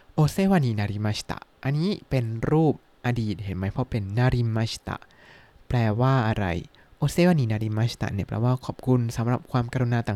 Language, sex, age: Thai, male, 20-39